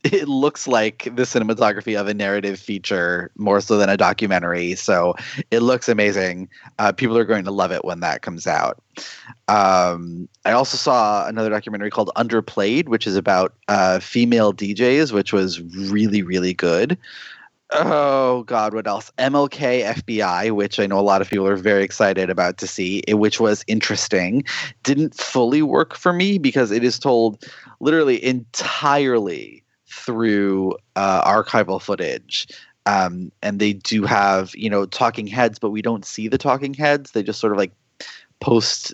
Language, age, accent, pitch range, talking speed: English, 30-49, American, 95-115 Hz, 165 wpm